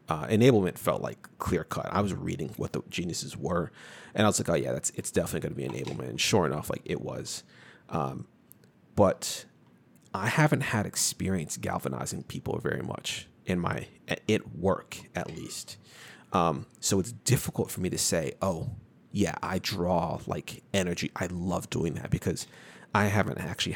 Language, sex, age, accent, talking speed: English, male, 30-49, American, 175 wpm